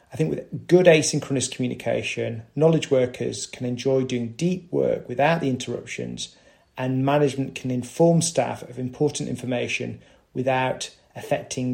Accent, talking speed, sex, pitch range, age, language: British, 135 wpm, male, 120-140 Hz, 30-49, English